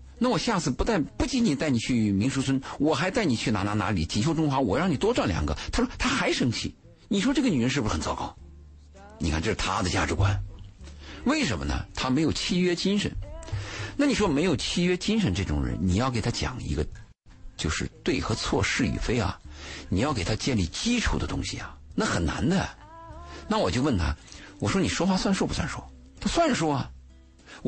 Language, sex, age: Chinese, male, 50-69